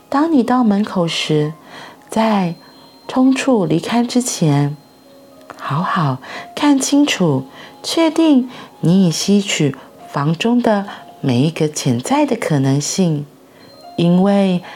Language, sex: Chinese, female